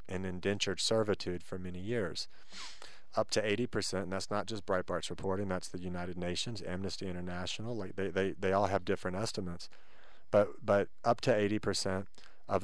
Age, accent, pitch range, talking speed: 40-59, American, 90-105 Hz, 175 wpm